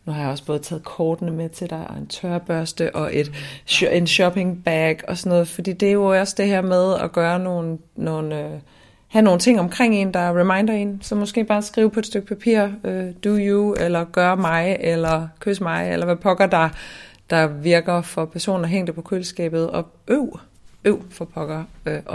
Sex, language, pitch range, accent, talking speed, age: female, Danish, 140-180 Hz, native, 200 wpm, 30-49